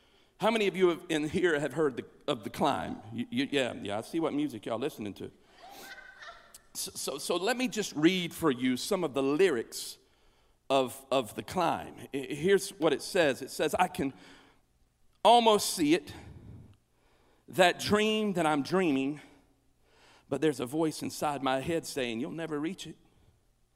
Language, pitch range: English, 150-200 Hz